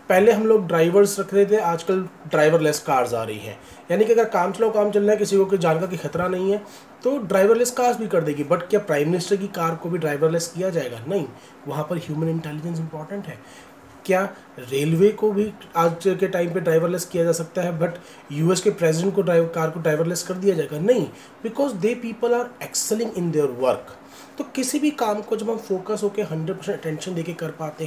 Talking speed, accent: 215 wpm, native